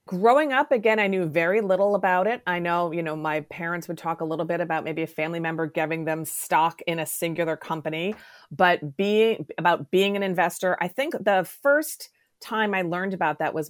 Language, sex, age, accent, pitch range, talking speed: English, female, 30-49, American, 160-190 Hz, 210 wpm